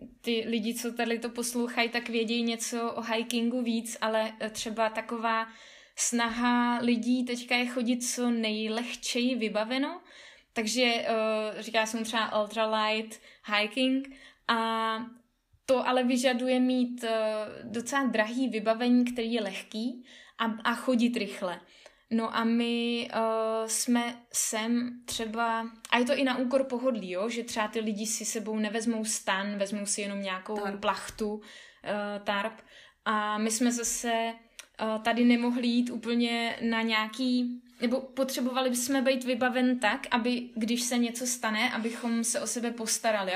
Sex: female